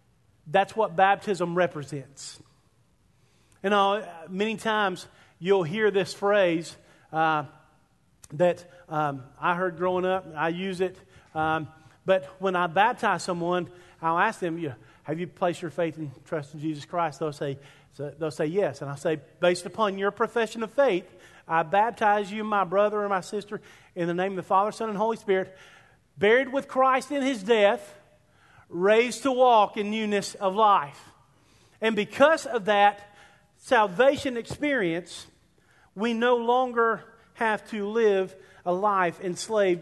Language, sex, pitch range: English, male, 170-220 Hz